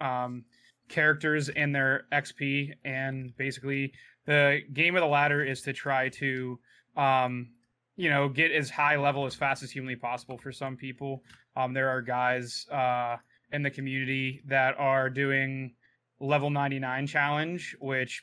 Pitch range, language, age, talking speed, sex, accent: 130-150 Hz, English, 20-39, 150 wpm, male, American